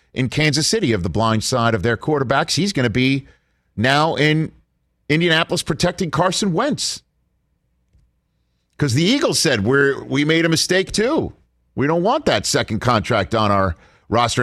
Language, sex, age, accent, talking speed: English, male, 50-69, American, 160 wpm